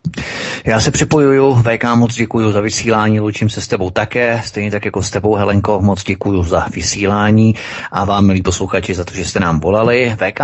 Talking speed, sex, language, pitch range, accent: 195 wpm, male, Czech, 100-120 Hz, native